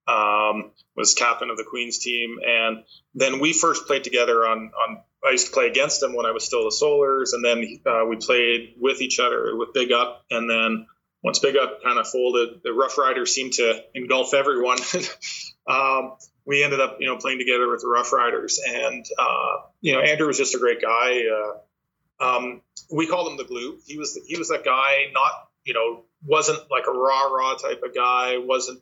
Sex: male